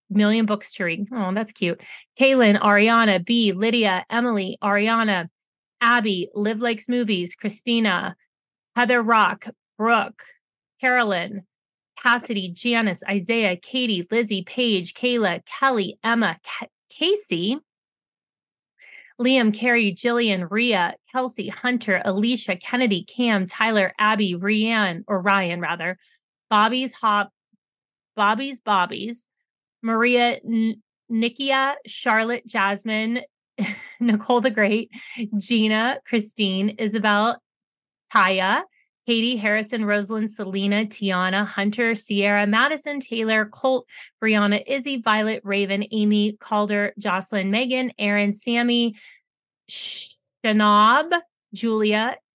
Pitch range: 205-235 Hz